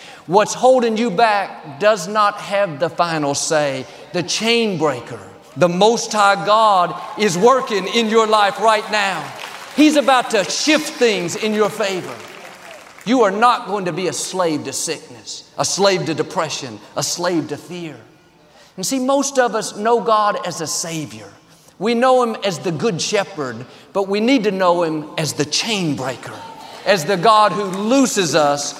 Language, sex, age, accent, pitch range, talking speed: English, male, 50-69, American, 160-230 Hz, 175 wpm